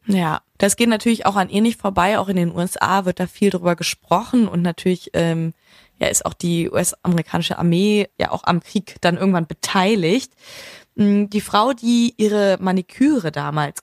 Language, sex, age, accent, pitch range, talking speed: German, female, 20-39, German, 175-215 Hz, 175 wpm